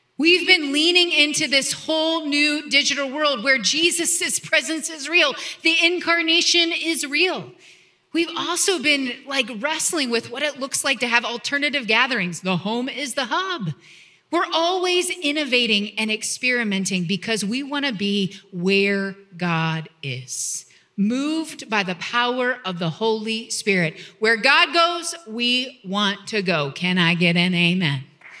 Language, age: English, 30-49